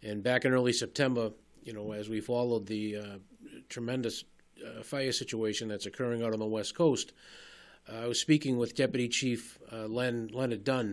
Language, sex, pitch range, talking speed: English, male, 110-130 Hz, 185 wpm